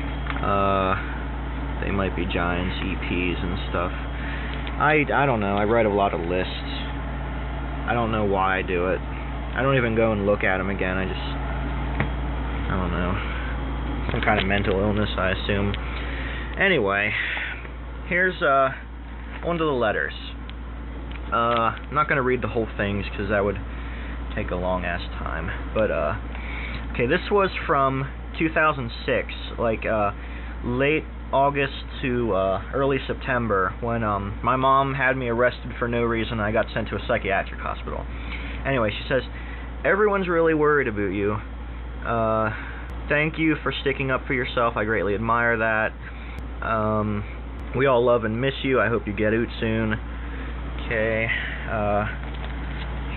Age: 20-39